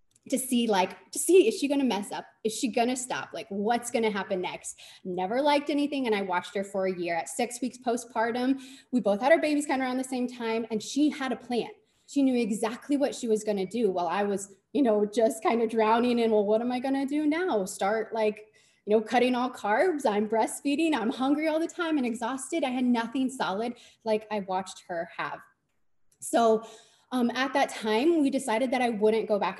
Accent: American